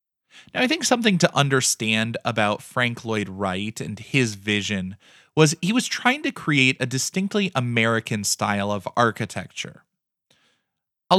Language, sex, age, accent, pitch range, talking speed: English, male, 20-39, American, 115-170 Hz, 140 wpm